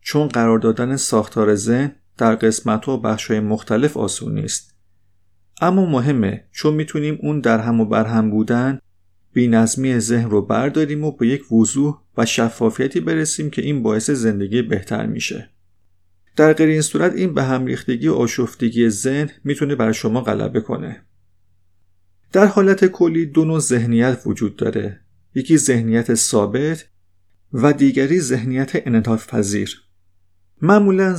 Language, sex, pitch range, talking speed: Persian, male, 105-140 Hz, 140 wpm